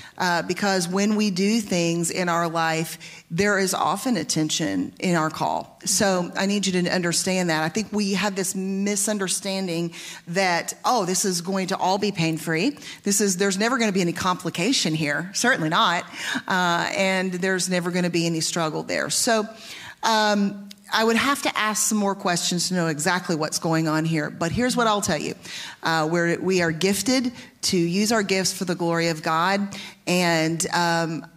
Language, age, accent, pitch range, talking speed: English, 40-59, American, 170-205 Hz, 190 wpm